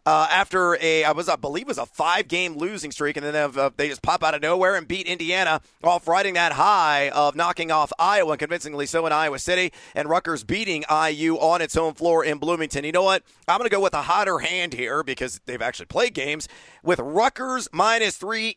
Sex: male